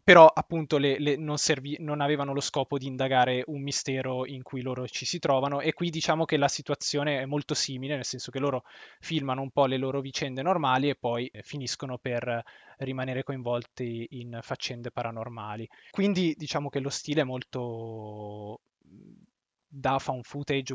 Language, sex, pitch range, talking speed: Italian, male, 120-140 Hz, 170 wpm